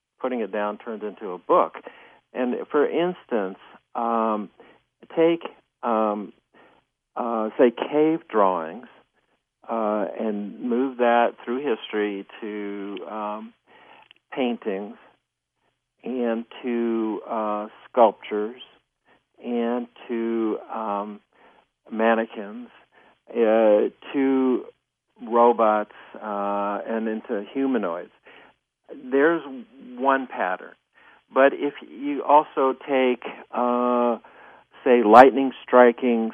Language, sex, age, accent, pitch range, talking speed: English, male, 60-79, American, 105-120 Hz, 90 wpm